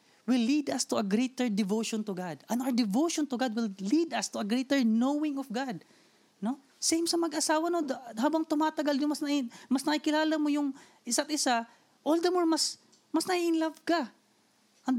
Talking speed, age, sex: 200 wpm, 20-39, female